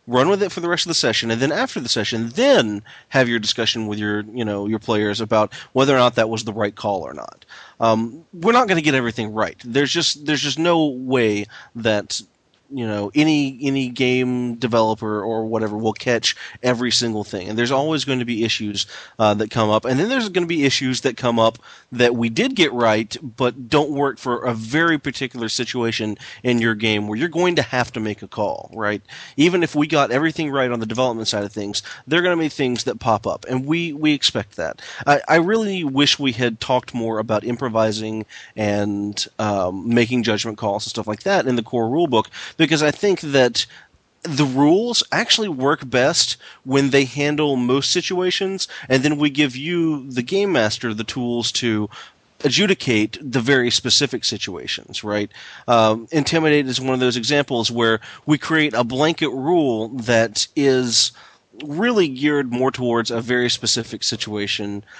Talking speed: 200 wpm